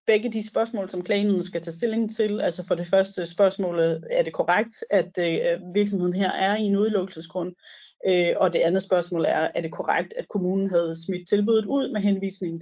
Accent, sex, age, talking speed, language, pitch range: native, female, 30-49, 195 wpm, Danish, 170-210 Hz